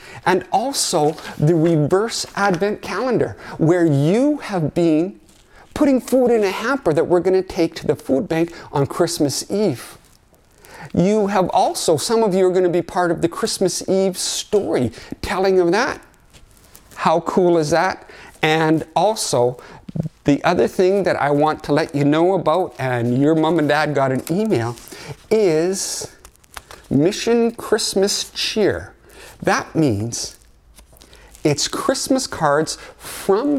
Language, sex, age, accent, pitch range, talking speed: English, male, 50-69, American, 150-195 Hz, 145 wpm